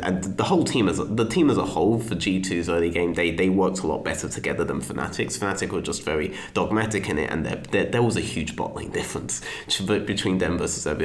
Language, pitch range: English, 85-95 Hz